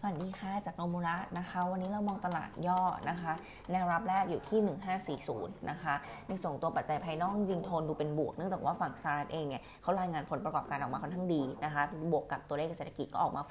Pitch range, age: 150-180 Hz, 20-39